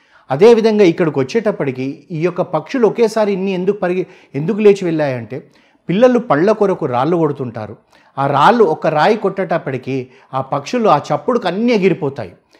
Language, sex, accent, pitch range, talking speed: Telugu, male, native, 135-185 Hz, 145 wpm